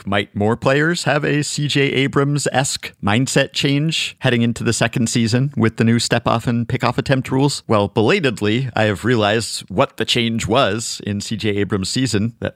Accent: American